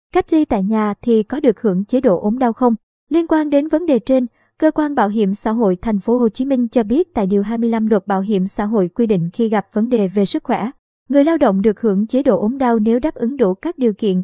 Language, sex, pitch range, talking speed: Vietnamese, male, 205-255 Hz, 275 wpm